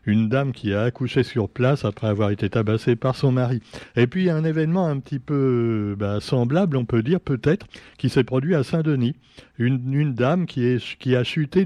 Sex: male